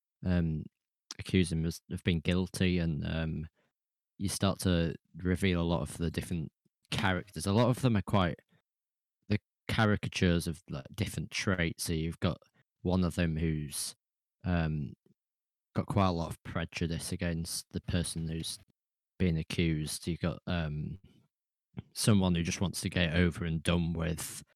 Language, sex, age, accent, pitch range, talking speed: English, male, 20-39, British, 80-95 Hz, 155 wpm